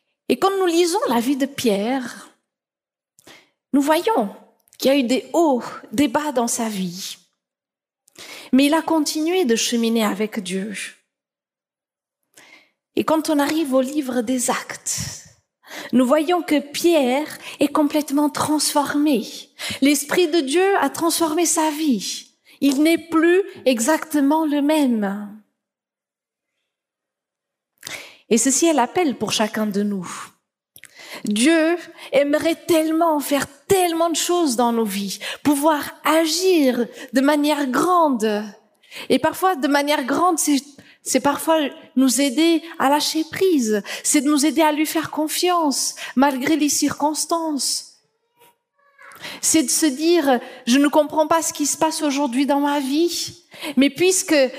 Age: 40-59